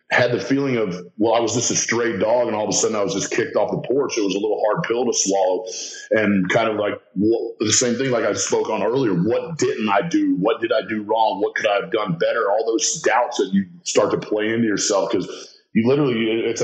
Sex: male